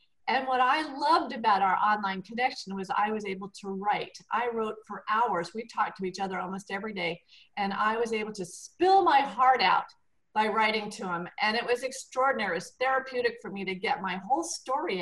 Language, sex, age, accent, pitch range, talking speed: English, female, 50-69, American, 190-240 Hz, 210 wpm